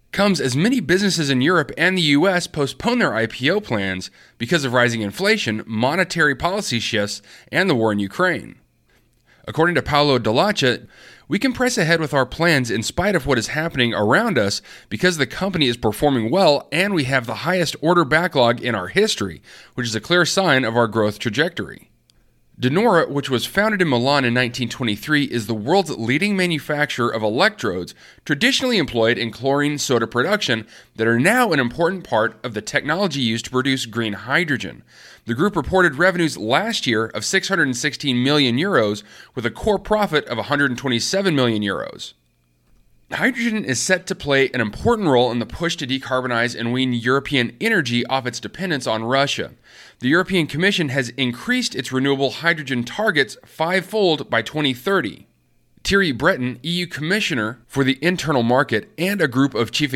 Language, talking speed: English, 170 wpm